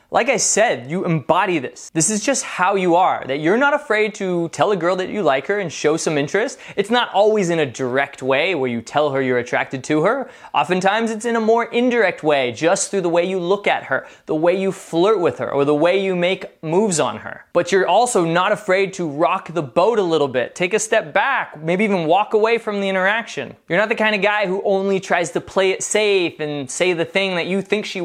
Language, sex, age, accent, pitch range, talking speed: English, male, 20-39, American, 170-215 Hz, 250 wpm